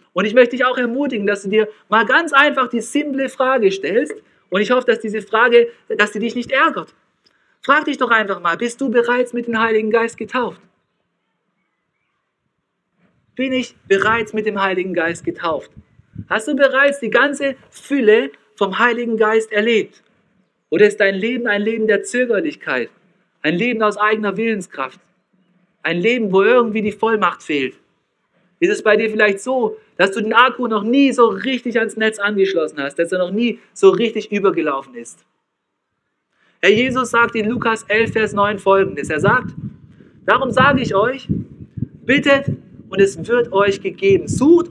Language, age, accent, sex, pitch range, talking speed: German, 50-69, German, male, 200-255 Hz, 170 wpm